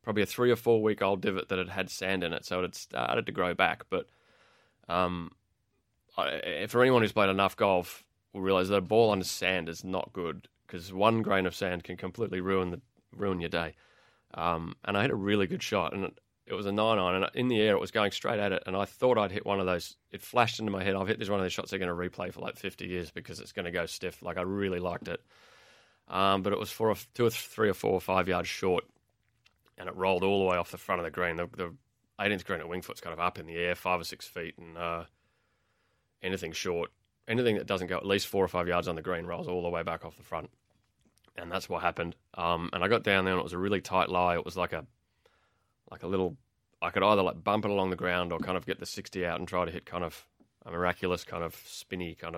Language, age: English, 20-39